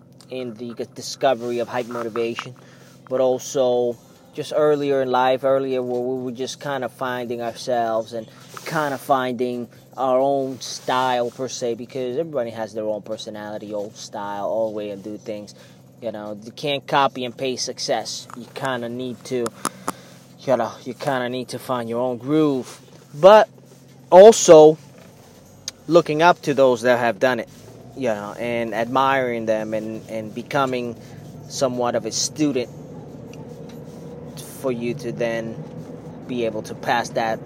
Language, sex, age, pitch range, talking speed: English, male, 20-39, 120-155 Hz, 155 wpm